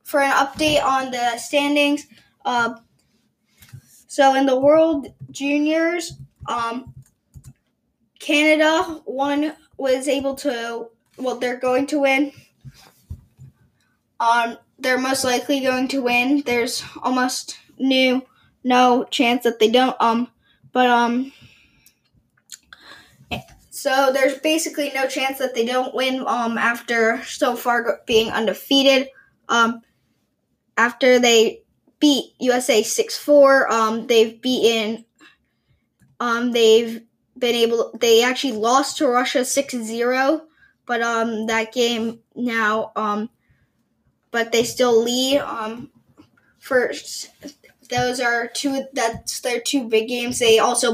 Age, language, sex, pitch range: 10-29, English, female, 230-280 Hz